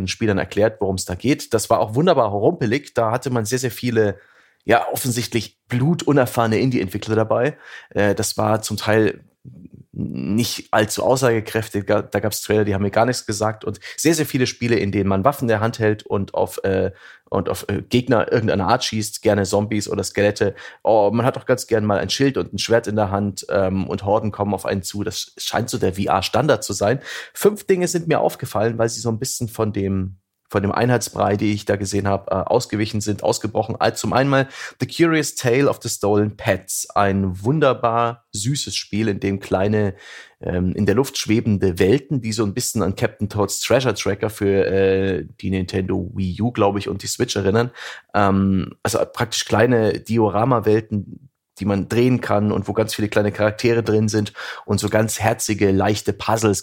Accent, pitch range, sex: German, 100-120 Hz, male